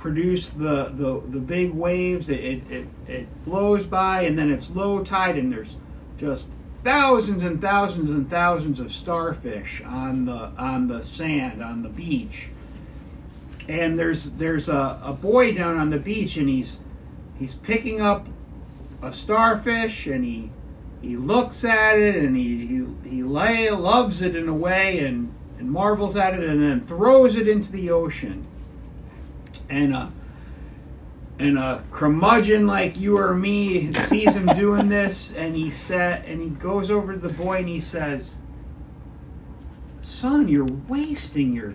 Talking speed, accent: 155 wpm, American